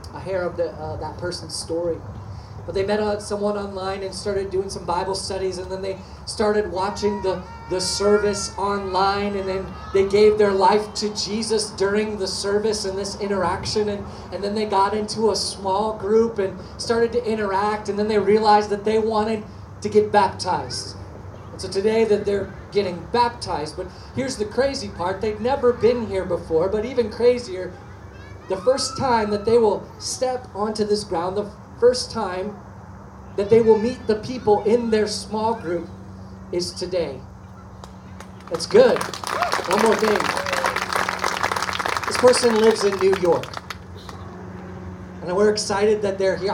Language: English